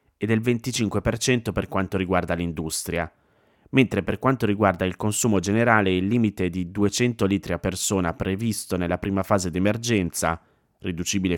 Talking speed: 140 wpm